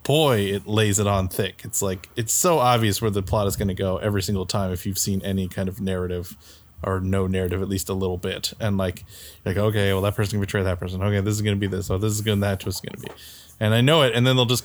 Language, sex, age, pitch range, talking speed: English, male, 20-39, 95-115 Hz, 295 wpm